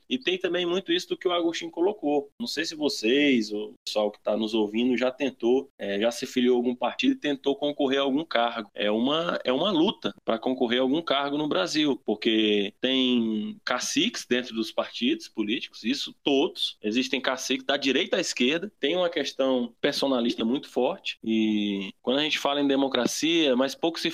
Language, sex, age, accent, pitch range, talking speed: Portuguese, male, 20-39, Brazilian, 120-170 Hz, 190 wpm